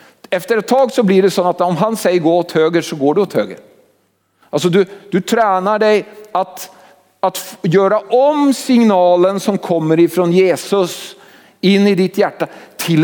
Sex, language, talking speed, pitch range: male, Swedish, 180 wpm, 185-245 Hz